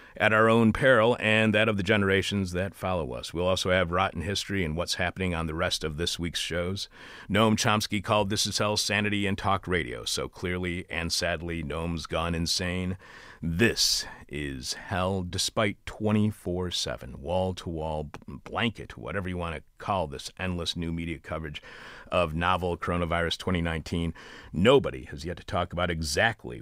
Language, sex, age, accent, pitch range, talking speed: English, male, 40-59, American, 85-95 Hz, 170 wpm